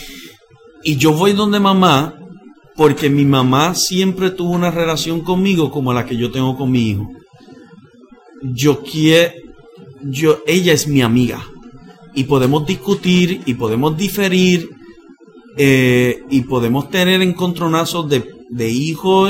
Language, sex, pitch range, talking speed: Spanish, male, 120-175 Hz, 120 wpm